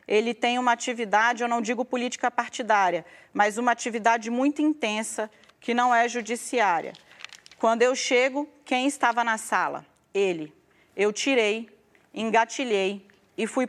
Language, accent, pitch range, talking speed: Portuguese, Brazilian, 195-240 Hz, 135 wpm